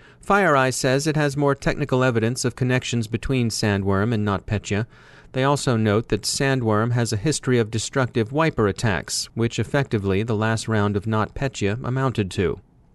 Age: 30-49